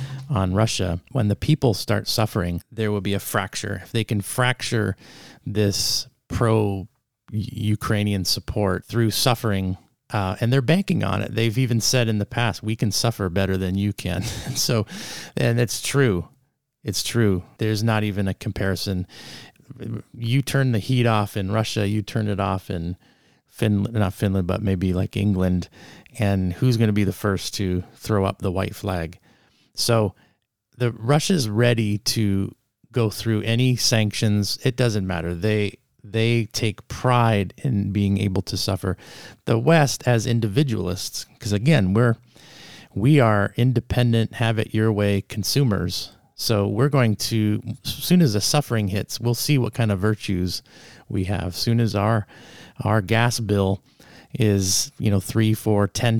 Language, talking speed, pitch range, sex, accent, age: English, 160 wpm, 100-120 Hz, male, American, 30-49